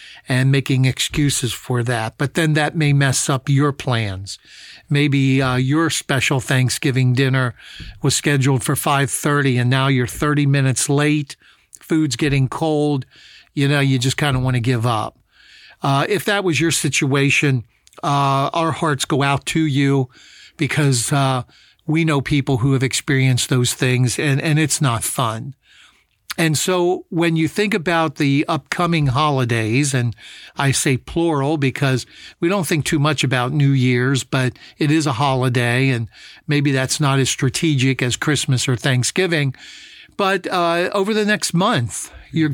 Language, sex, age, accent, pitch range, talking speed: English, male, 50-69, American, 130-155 Hz, 160 wpm